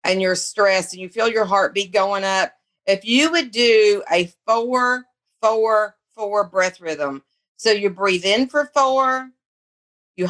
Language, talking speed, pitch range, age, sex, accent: English, 155 wpm, 190-235 Hz, 40-59, female, American